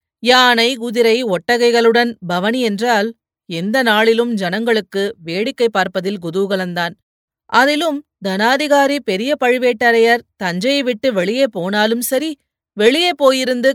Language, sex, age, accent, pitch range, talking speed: Tamil, female, 30-49, native, 195-250 Hz, 95 wpm